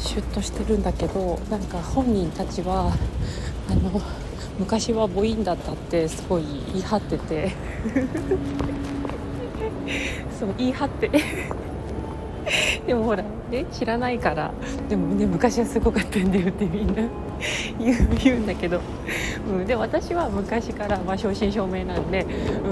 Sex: female